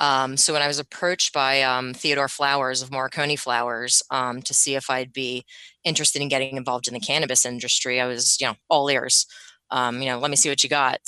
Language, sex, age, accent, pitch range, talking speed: English, female, 20-39, American, 125-140 Hz, 225 wpm